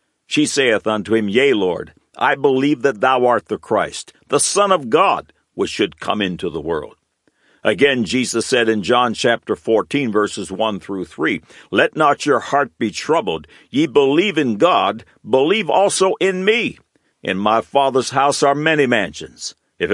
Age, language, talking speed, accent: 60-79, English, 170 wpm, American